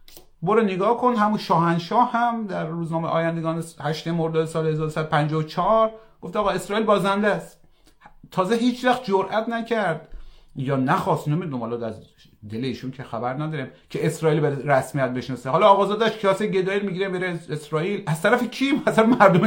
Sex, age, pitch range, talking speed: male, 30-49, 140-195 Hz, 150 wpm